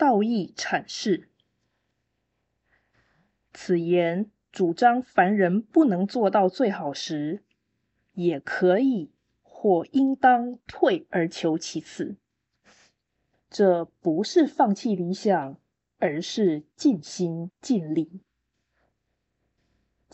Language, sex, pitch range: Chinese, female, 160-225 Hz